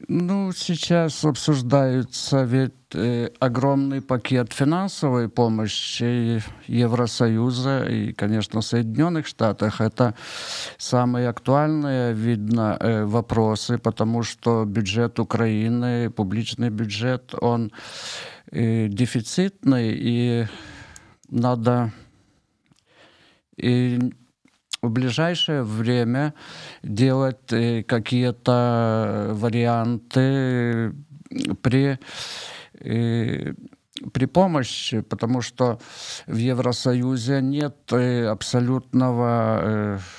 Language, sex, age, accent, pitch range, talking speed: Ukrainian, male, 50-69, native, 115-130 Hz, 65 wpm